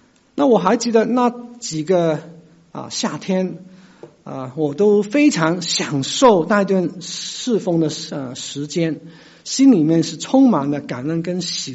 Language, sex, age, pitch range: Chinese, male, 50-69, 160-225 Hz